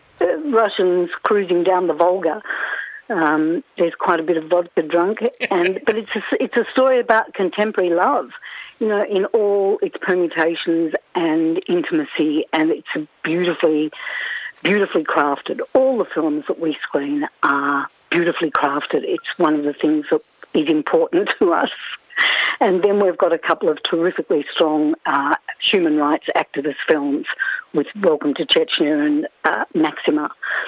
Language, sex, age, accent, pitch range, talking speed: English, female, 60-79, Australian, 165-265 Hz, 150 wpm